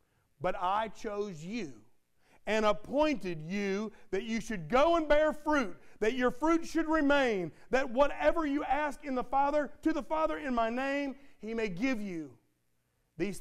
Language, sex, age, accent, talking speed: English, male, 40-59, American, 165 wpm